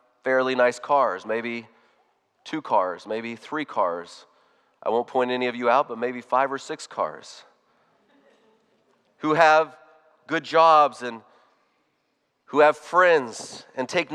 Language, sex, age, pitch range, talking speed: English, male, 40-59, 125-175 Hz, 135 wpm